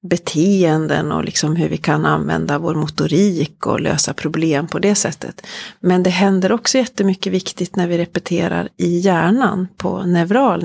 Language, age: Swedish, 30-49